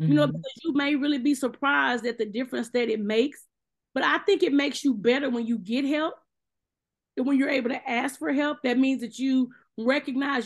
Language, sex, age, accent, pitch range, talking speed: English, female, 30-49, American, 235-270 Hz, 210 wpm